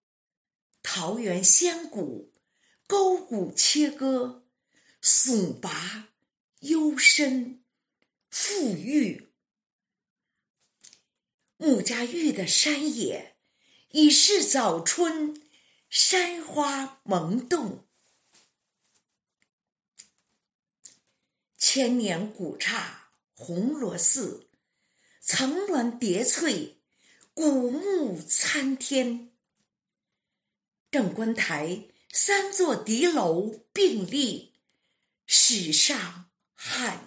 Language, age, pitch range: Chinese, 50-69, 215-310 Hz